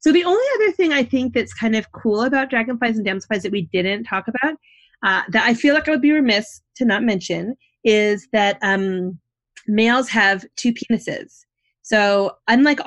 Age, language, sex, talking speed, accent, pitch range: 30-49, English, female, 190 wpm, American, 185-240 Hz